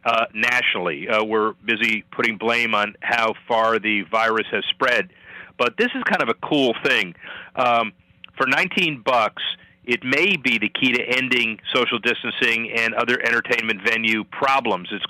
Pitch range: 110-130 Hz